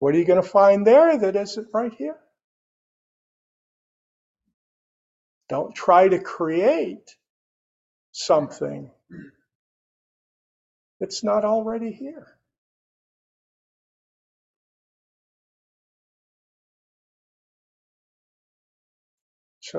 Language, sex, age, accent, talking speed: English, male, 50-69, American, 65 wpm